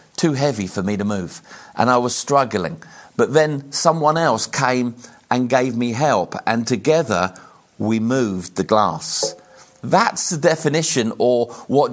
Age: 40-59